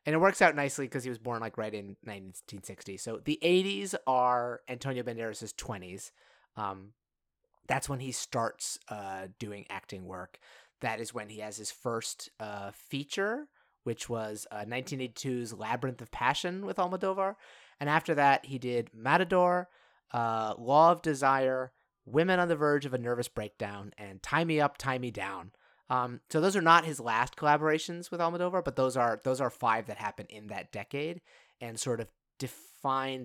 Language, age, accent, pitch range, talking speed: English, 30-49, American, 110-150 Hz, 175 wpm